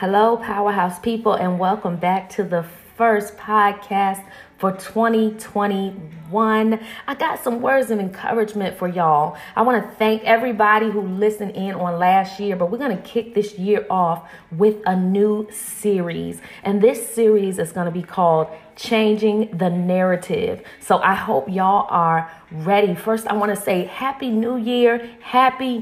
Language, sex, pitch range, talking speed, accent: English, female, 190-240 Hz, 155 wpm, American